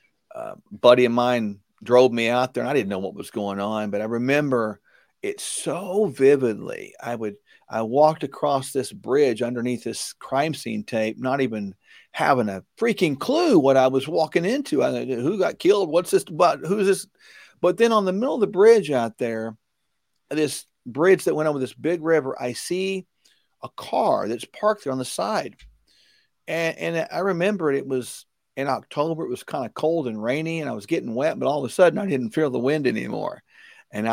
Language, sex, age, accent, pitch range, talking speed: English, male, 40-59, American, 120-170 Hz, 200 wpm